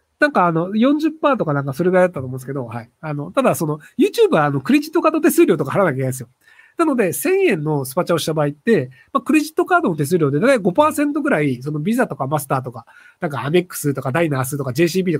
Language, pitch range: Japanese, 140-230 Hz